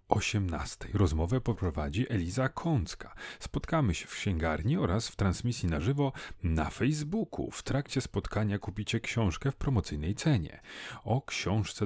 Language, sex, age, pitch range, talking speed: Polish, male, 40-59, 95-130 Hz, 130 wpm